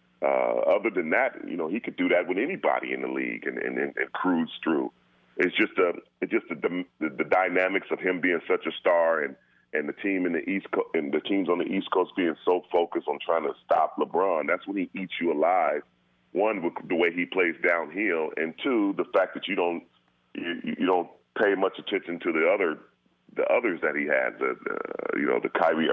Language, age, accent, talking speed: English, 40-59, American, 230 wpm